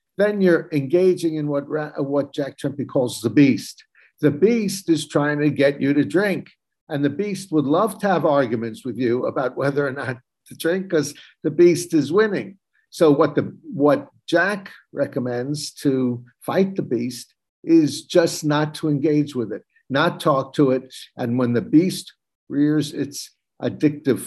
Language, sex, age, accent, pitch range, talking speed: English, male, 60-79, American, 125-165 Hz, 170 wpm